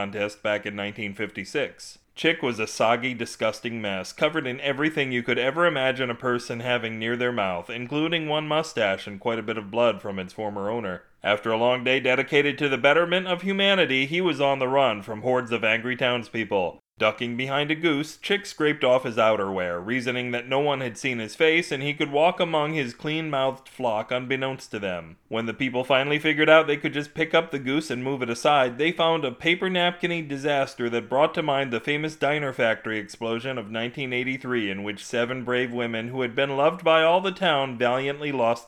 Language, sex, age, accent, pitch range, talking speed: English, male, 30-49, American, 110-145 Hz, 205 wpm